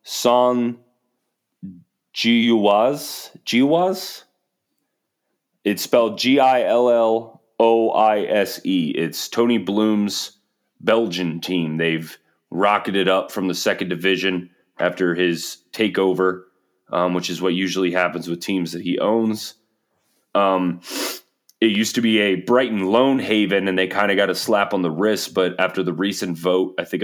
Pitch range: 85-110 Hz